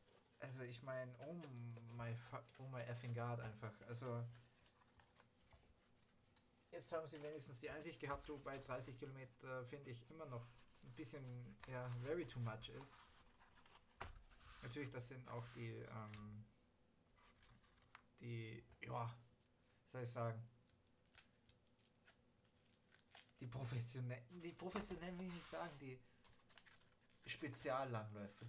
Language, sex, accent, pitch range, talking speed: German, male, German, 120-140 Hz, 105 wpm